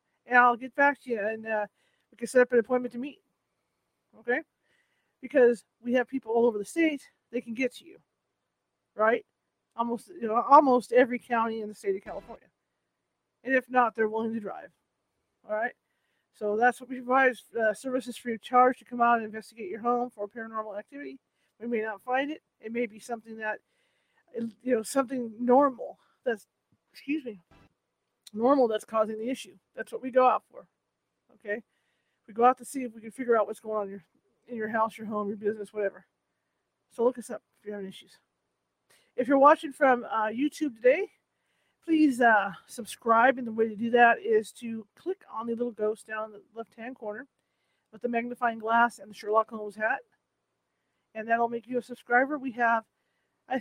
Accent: American